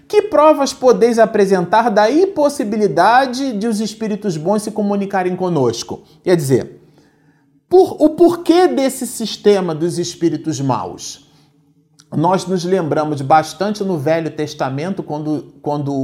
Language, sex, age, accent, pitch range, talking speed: Portuguese, male, 40-59, Brazilian, 150-230 Hz, 115 wpm